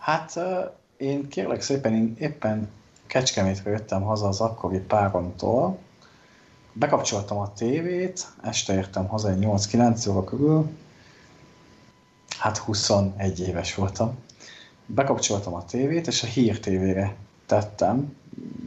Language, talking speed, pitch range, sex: Hungarian, 110 wpm, 100-130 Hz, male